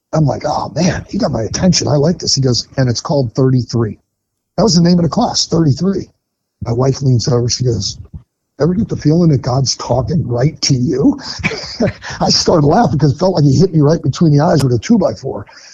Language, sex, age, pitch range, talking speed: English, male, 50-69, 115-140 Hz, 220 wpm